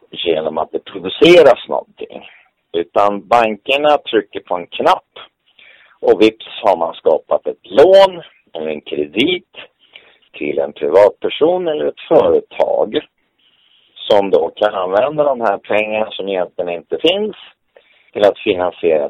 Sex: male